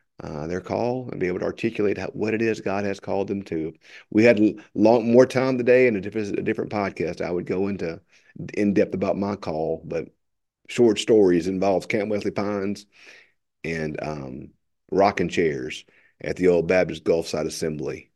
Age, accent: 40-59, American